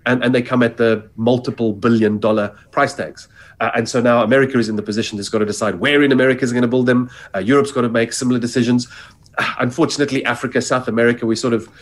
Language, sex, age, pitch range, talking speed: English, male, 40-59, 115-140 Hz, 240 wpm